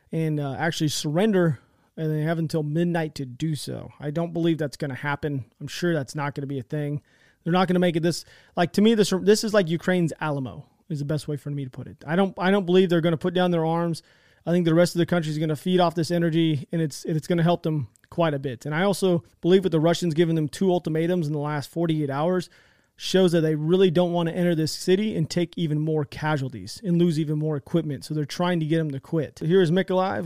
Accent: American